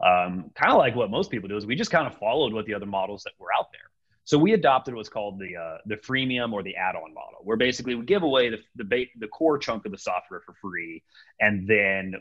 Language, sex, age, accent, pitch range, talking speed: English, male, 30-49, American, 95-120 Hz, 260 wpm